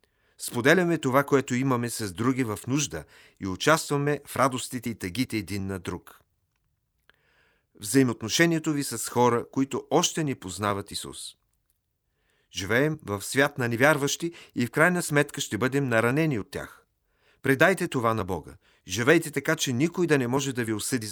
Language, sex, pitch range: Bulgarian, male, 110-145 Hz